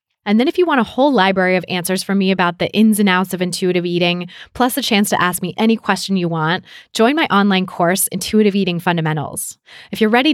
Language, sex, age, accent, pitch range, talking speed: English, female, 20-39, American, 175-215 Hz, 230 wpm